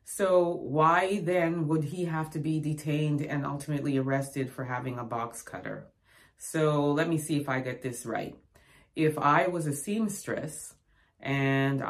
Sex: female